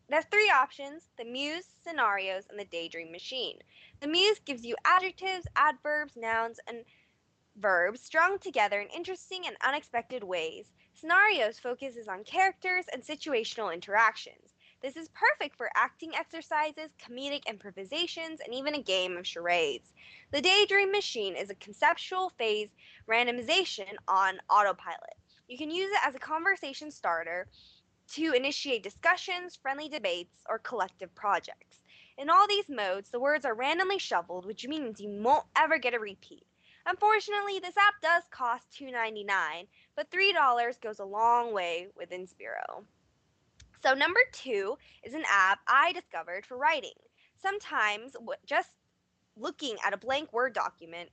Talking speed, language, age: 145 wpm, English, 10-29